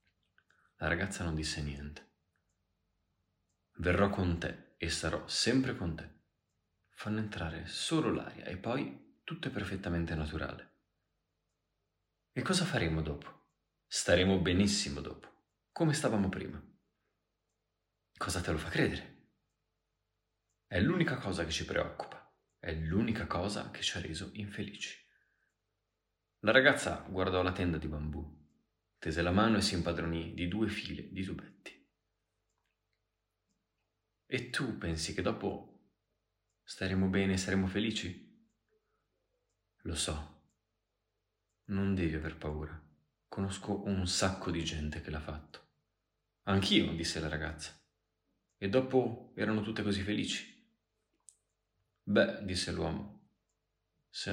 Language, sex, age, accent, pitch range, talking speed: Italian, male, 30-49, native, 80-100 Hz, 120 wpm